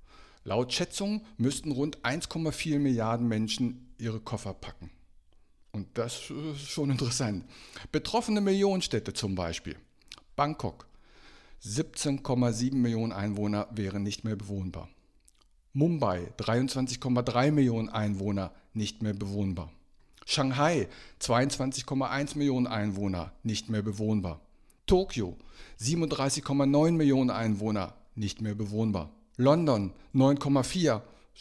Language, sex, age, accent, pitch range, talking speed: German, male, 50-69, German, 105-140 Hz, 95 wpm